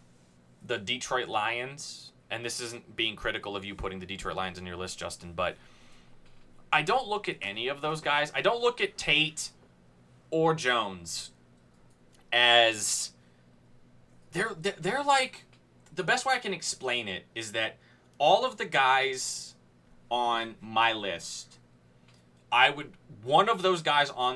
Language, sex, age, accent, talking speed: English, male, 20-39, American, 155 wpm